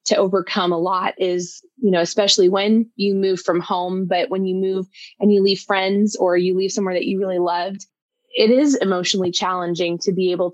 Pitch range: 185-215 Hz